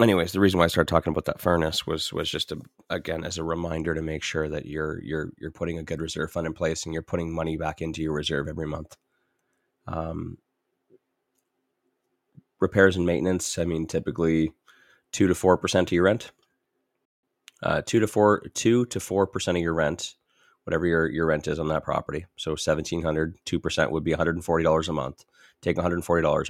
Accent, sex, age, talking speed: American, male, 30-49, 190 wpm